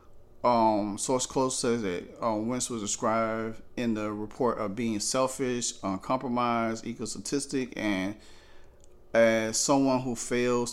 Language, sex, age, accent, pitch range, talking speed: English, male, 40-59, American, 110-130 Hz, 125 wpm